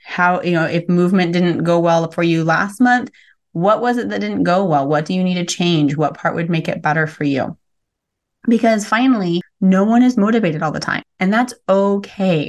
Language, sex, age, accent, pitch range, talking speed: English, female, 30-49, American, 165-205 Hz, 215 wpm